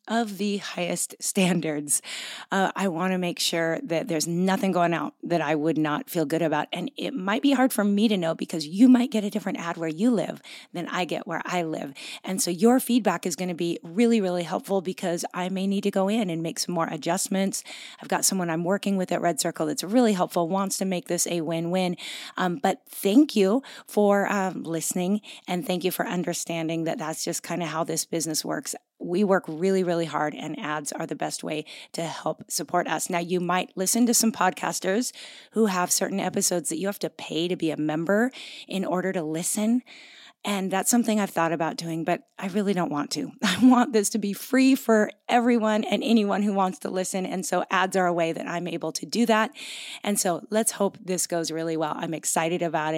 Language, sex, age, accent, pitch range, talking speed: English, female, 30-49, American, 170-225 Hz, 225 wpm